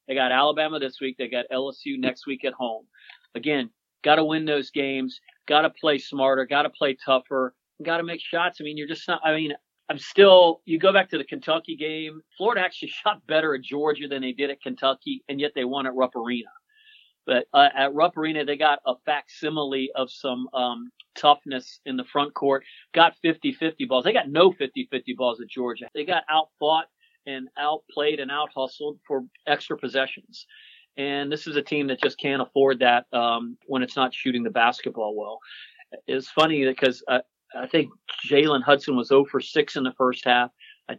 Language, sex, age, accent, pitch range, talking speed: English, male, 40-59, American, 130-155 Hz, 200 wpm